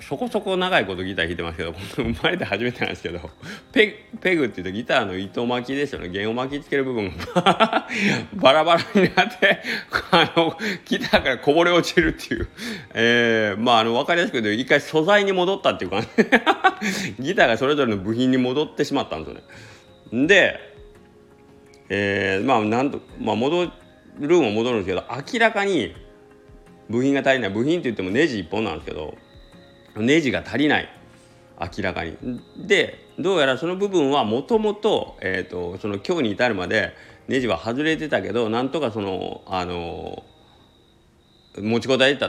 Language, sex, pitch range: Japanese, male, 95-150 Hz